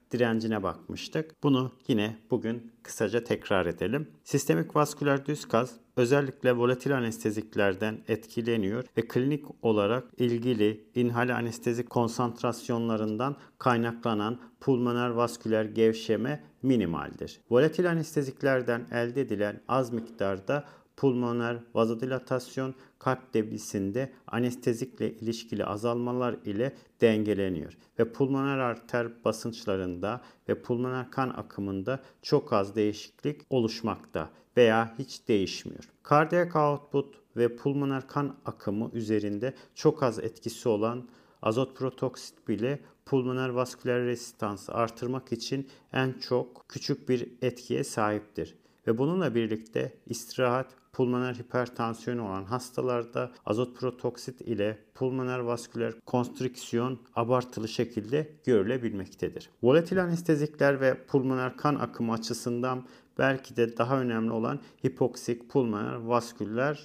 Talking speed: 105 wpm